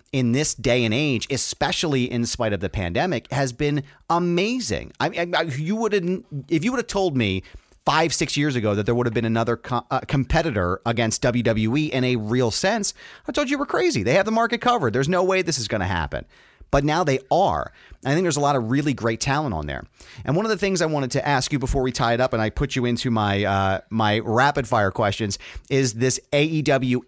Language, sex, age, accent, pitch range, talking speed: English, male, 30-49, American, 110-150 Hz, 240 wpm